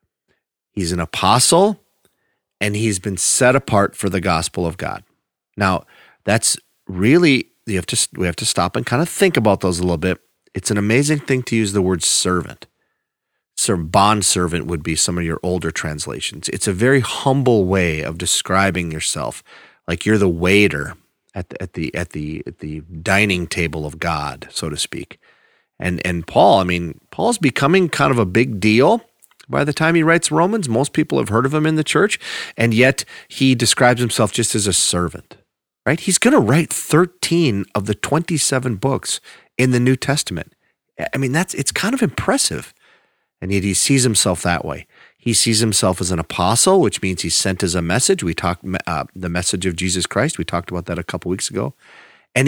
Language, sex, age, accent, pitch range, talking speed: English, male, 40-59, American, 90-130 Hz, 195 wpm